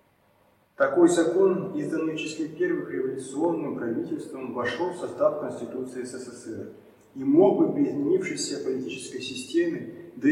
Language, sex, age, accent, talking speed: Russian, male, 30-49, native, 115 wpm